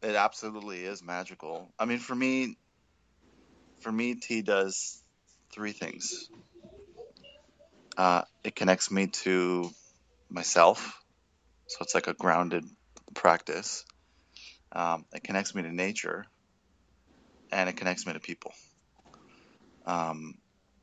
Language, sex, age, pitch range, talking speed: English, male, 30-49, 80-100 Hz, 110 wpm